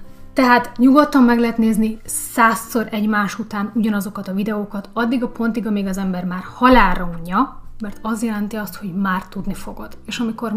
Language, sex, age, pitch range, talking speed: Hungarian, female, 30-49, 200-230 Hz, 170 wpm